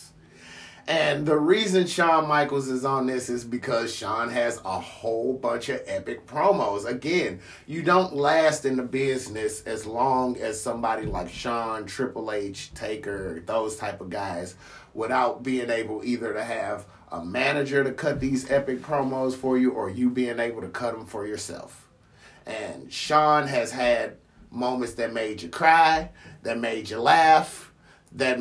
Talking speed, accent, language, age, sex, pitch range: 160 wpm, American, English, 30-49, male, 115-150 Hz